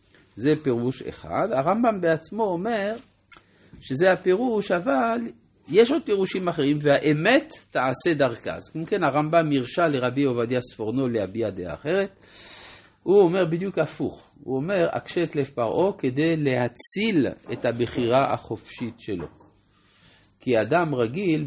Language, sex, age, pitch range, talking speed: Hebrew, male, 50-69, 115-160 Hz, 125 wpm